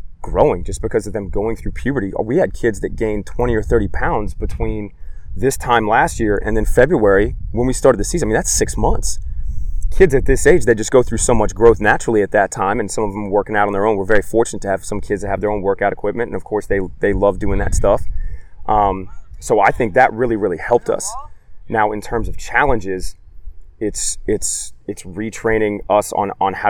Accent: American